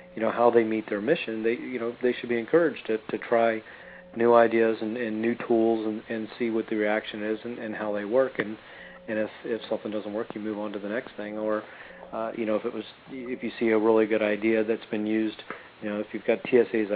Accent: American